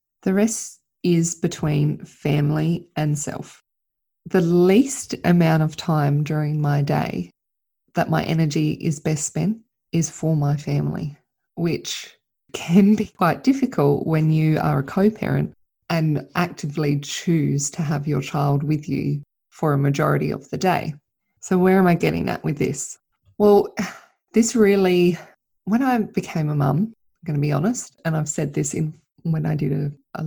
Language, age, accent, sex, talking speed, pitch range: English, 20-39, Australian, female, 160 wpm, 150-185 Hz